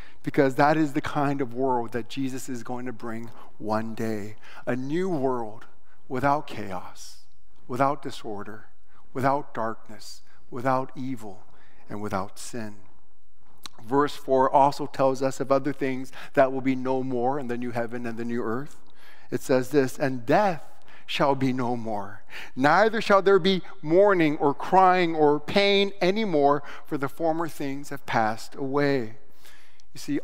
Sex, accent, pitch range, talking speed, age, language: male, American, 115-145 Hz, 155 wpm, 50-69, English